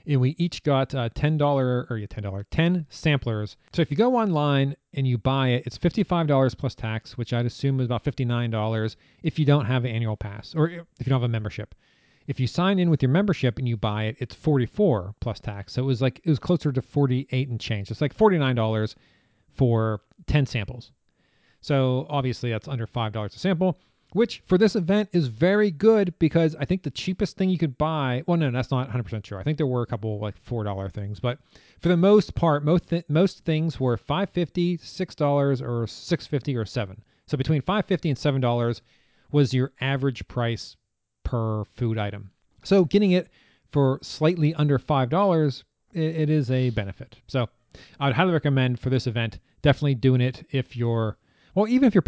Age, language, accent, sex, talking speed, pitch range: 40-59, English, American, male, 200 wpm, 120-160 Hz